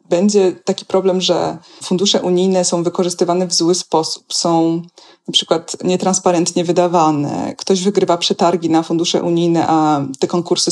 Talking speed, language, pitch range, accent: 140 wpm, Polish, 175-205 Hz, native